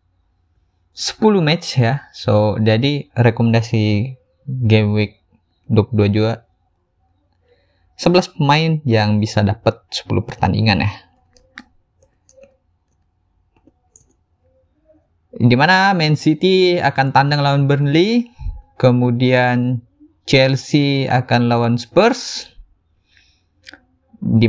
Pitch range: 105-145 Hz